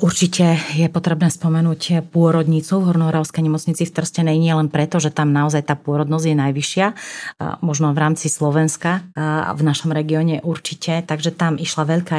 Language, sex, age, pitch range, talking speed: Slovak, female, 30-49, 155-170 Hz, 160 wpm